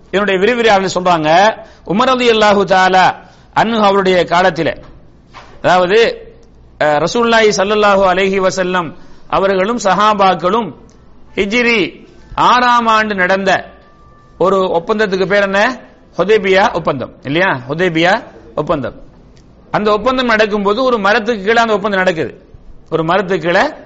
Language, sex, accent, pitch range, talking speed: English, male, Indian, 175-220 Hz, 80 wpm